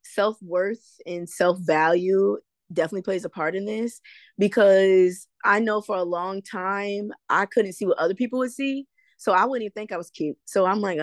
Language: English